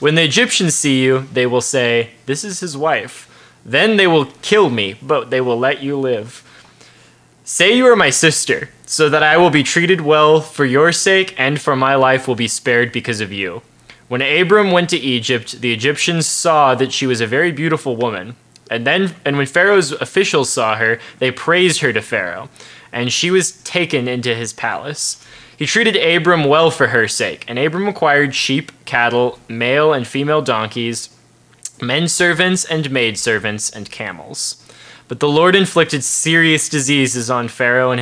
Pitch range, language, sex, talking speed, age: 125-170 Hz, English, male, 180 wpm, 20-39